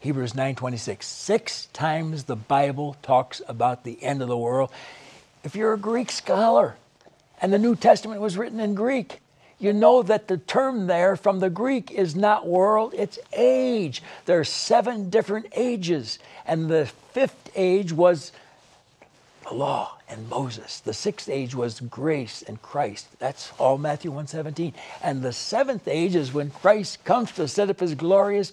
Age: 60-79